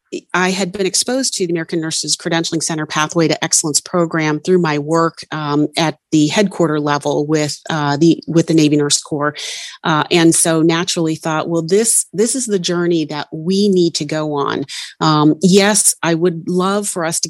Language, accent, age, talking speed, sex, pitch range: English, American, 30-49, 185 wpm, female, 155-180 Hz